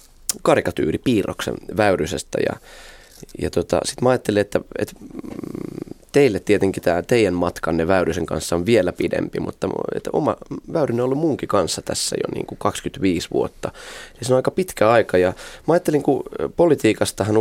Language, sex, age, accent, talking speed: Finnish, male, 20-39, native, 140 wpm